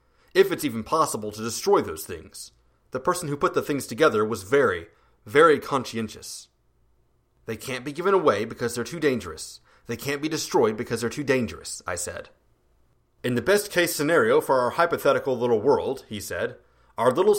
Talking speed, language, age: 175 wpm, English, 30-49